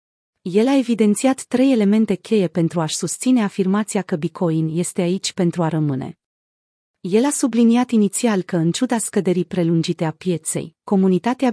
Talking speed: 150 wpm